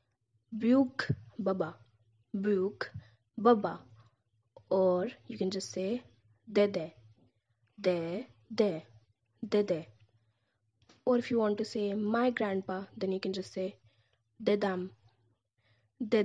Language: English